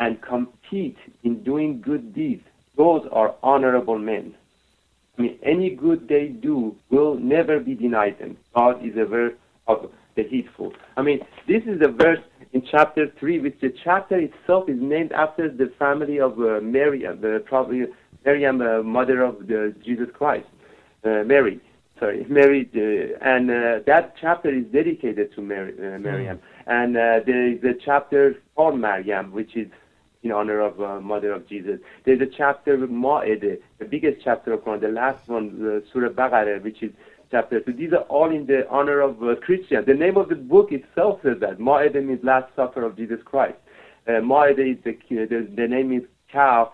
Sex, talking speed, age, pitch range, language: male, 185 wpm, 50-69, 115-145 Hz, English